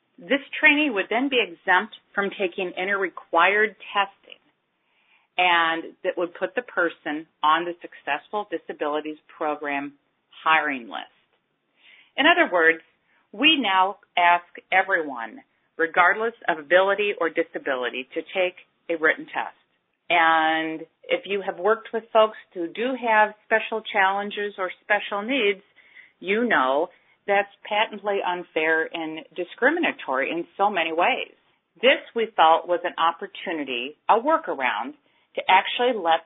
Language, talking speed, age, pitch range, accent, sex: English, 130 wpm, 50-69, 165-215 Hz, American, female